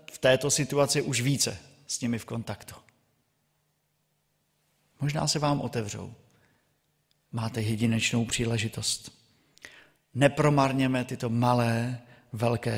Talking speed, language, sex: 95 wpm, Czech, male